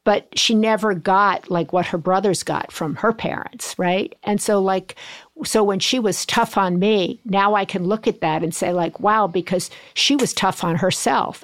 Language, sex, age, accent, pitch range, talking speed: English, female, 50-69, American, 180-210 Hz, 205 wpm